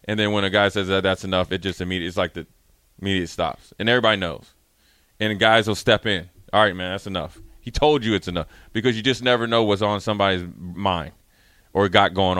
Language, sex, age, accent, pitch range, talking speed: English, male, 30-49, American, 95-110 Hz, 225 wpm